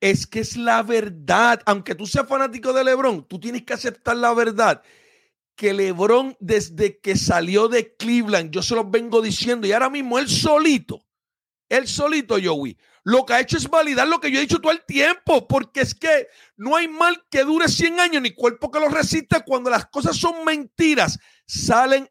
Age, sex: 50-69, male